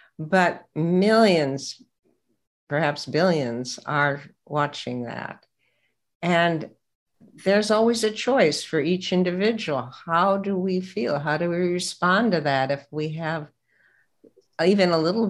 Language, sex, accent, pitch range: English, female, American, 140-180 Hz